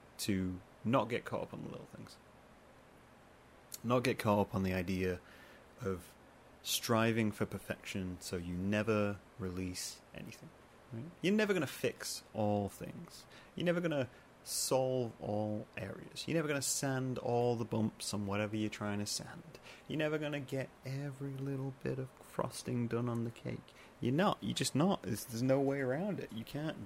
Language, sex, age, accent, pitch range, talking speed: English, male, 30-49, British, 95-135 Hz, 180 wpm